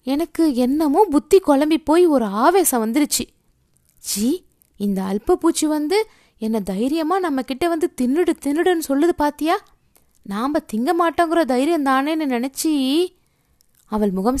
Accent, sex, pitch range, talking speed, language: native, female, 235-330 Hz, 120 wpm, Tamil